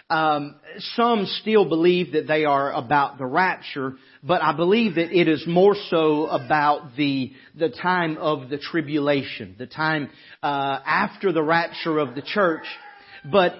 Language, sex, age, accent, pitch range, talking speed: English, male, 40-59, American, 155-195 Hz, 155 wpm